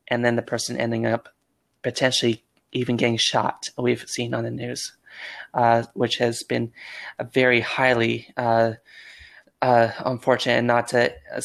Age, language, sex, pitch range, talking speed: 20-39, English, male, 120-130 Hz, 150 wpm